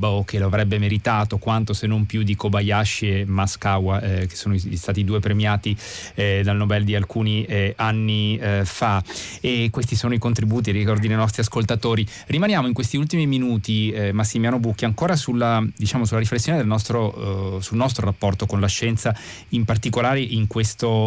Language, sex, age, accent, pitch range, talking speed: Italian, male, 30-49, native, 100-115 Hz, 175 wpm